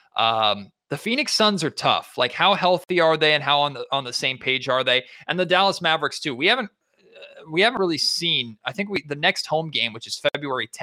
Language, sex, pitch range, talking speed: English, male, 125-170 Hz, 240 wpm